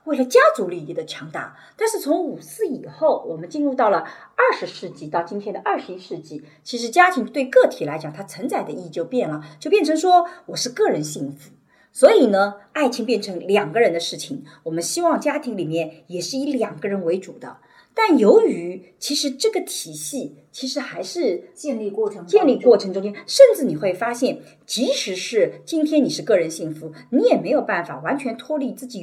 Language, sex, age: Chinese, female, 40-59